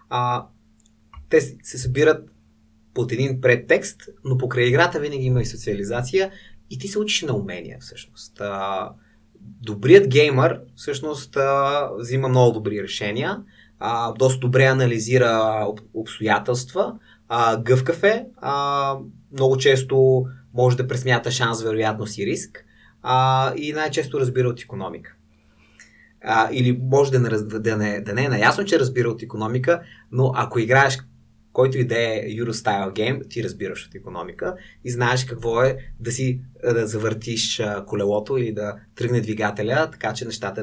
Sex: male